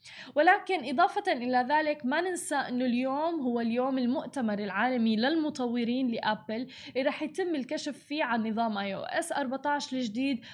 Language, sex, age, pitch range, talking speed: Arabic, female, 10-29, 235-290 Hz, 150 wpm